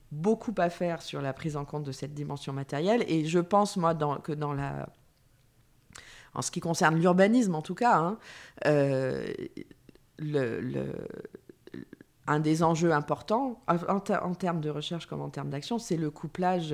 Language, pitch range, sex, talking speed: French, 145-185 Hz, female, 175 wpm